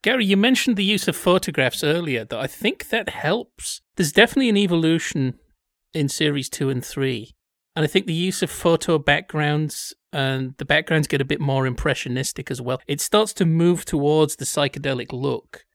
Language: English